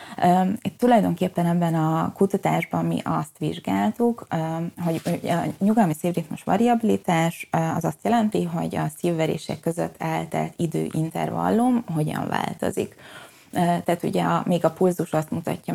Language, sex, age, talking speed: Hungarian, female, 20-39, 125 wpm